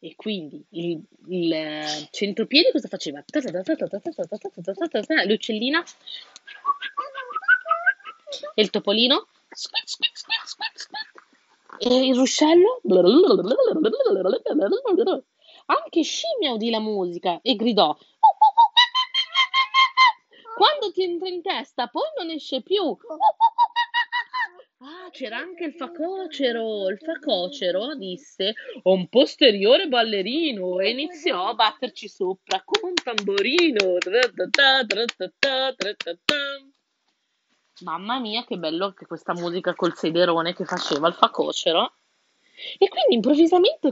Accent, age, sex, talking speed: native, 30-49, female, 90 wpm